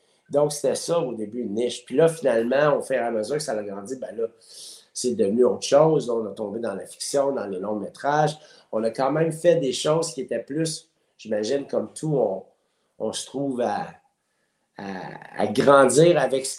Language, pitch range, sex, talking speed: French, 125-160 Hz, male, 205 wpm